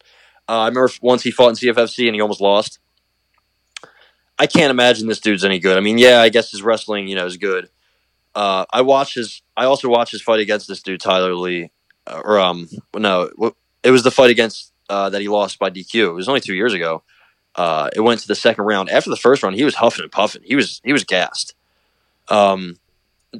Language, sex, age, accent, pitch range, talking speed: English, male, 20-39, American, 95-125 Hz, 220 wpm